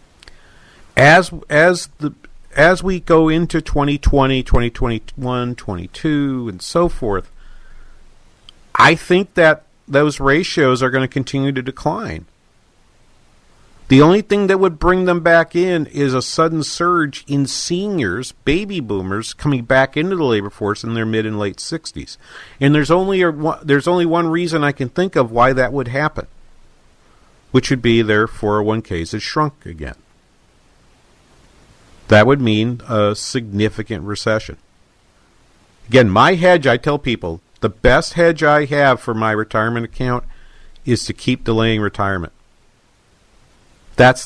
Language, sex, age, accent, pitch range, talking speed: English, male, 50-69, American, 105-150 Hz, 140 wpm